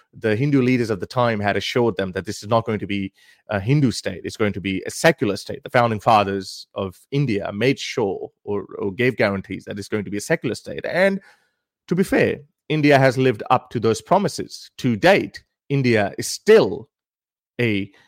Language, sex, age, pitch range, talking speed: English, male, 30-49, 105-130 Hz, 205 wpm